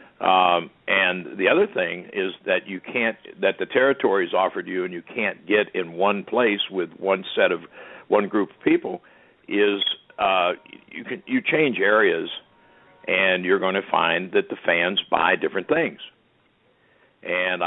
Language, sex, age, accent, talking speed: English, male, 60-79, American, 165 wpm